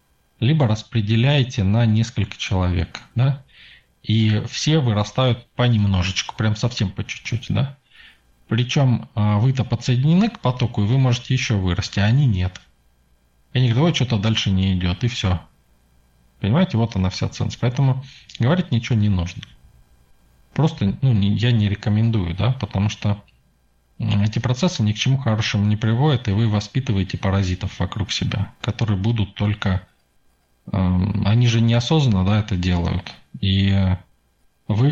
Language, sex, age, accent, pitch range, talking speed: Russian, male, 20-39, native, 95-120 Hz, 135 wpm